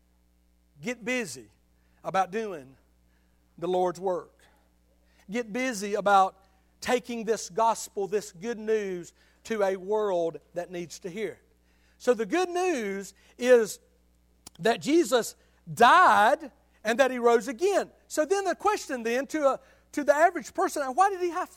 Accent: American